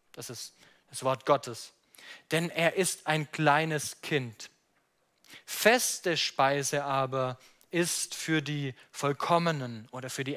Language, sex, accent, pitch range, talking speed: German, male, German, 130-165 Hz, 120 wpm